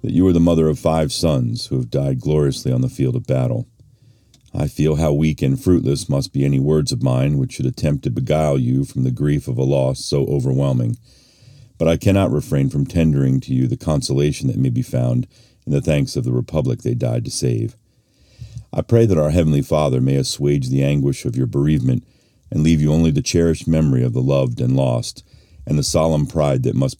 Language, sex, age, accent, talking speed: English, male, 40-59, American, 220 wpm